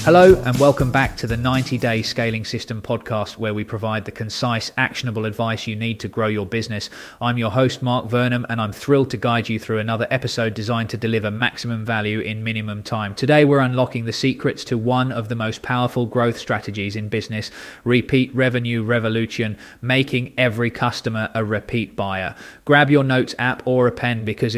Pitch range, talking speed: 110-125 Hz, 190 wpm